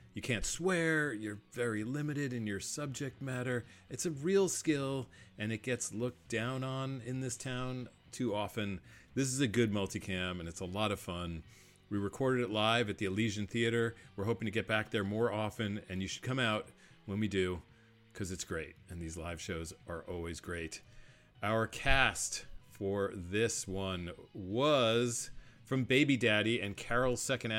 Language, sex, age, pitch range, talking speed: English, male, 40-59, 100-135 Hz, 180 wpm